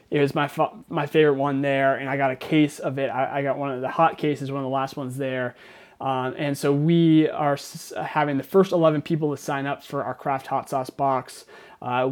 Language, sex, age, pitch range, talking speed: English, male, 30-49, 135-160 Hz, 250 wpm